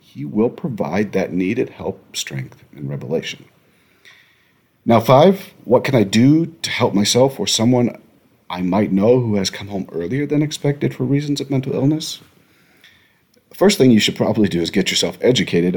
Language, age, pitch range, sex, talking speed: English, 40-59, 95-130 Hz, male, 175 wpm